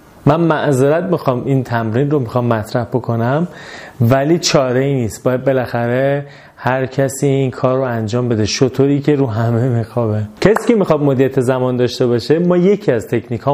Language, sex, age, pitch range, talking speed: Persian, male, 30-49, 120-145 Hz, 170 wpm